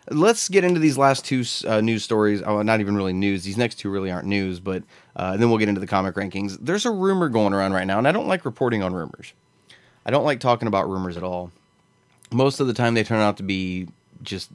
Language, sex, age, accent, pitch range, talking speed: English, male, 30-49, American, 95-130 Hz, 250 wpm